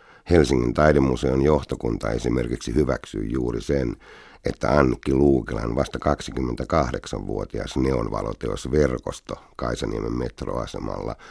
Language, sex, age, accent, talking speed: Finnish, male, 60-79, native, 80 wpm